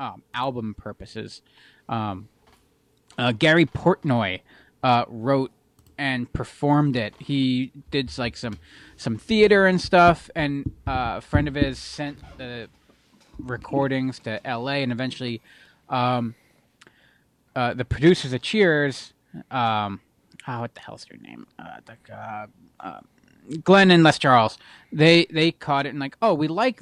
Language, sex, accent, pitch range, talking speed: English, male, American, 120-150 Hz, 135 wpm